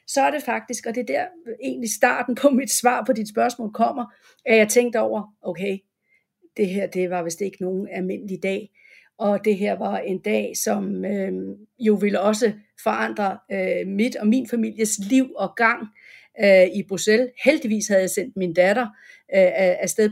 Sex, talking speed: female, 185 wpm